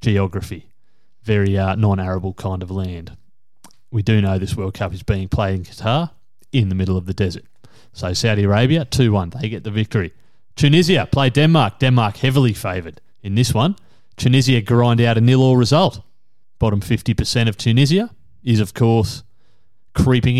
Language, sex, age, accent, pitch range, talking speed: English, male, 30-49, Australian, 105-125 Hz, 160 wpm